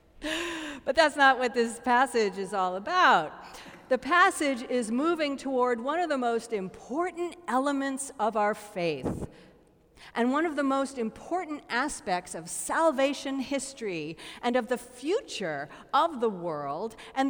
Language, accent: English, American